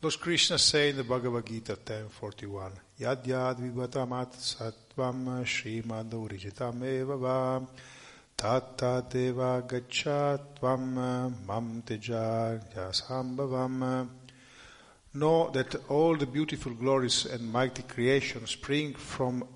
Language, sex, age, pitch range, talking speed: Italian, male, 50-69, 115-135 Hz, 60 wpm